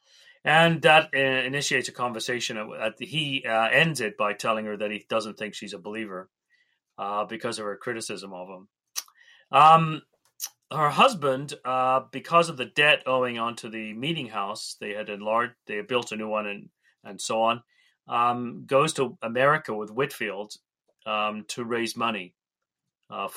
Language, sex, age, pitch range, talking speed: English, male, 30-49, 105-135 Hz, 160 wpm